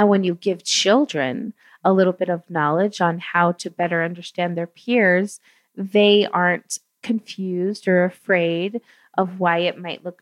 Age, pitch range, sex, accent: 30-49, 180-225 Hz, female, American